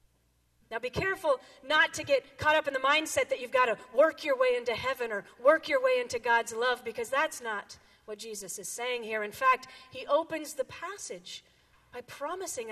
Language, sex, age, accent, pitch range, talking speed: English, female, 40-59, American, 200-280 Hz, 205 wpm